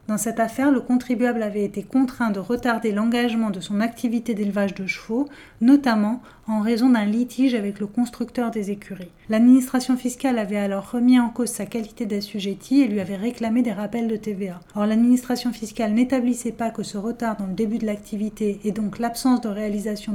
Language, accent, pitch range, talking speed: French, French, 205-235 Hz, 190 wpm